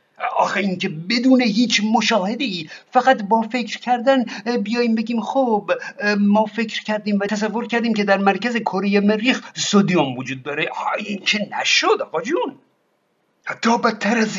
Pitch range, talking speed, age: 195-230 Hz, 130 wpm, 50-69